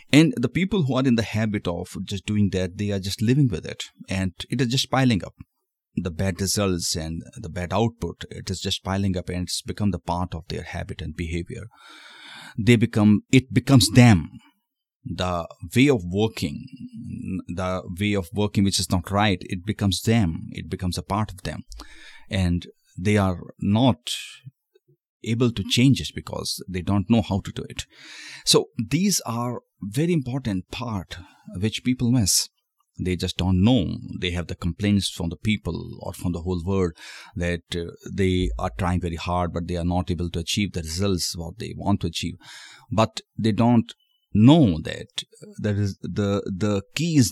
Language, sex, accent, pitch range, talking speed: Hindi, male, native, 90-120 Hz, 185 wpm